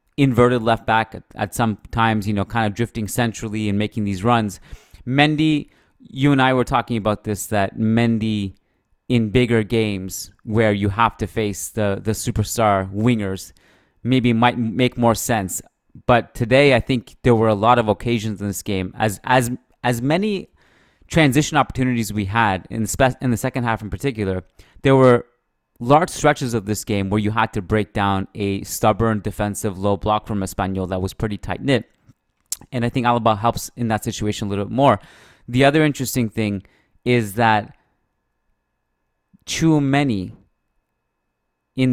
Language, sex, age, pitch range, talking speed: English, male, 30-49, 100-125 Hz, 170 wpm